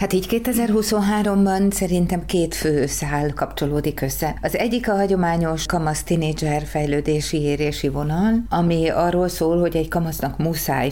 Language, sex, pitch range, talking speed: Hungarian, female, 145-165 Hz, 130 wpm